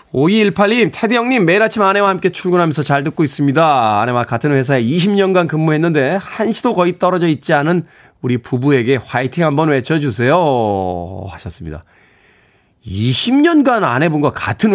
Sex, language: male, Korean